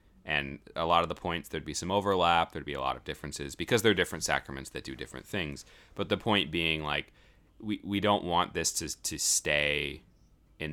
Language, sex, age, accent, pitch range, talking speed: English, male, 30-49, American, 75-95 Hz, 220 wpm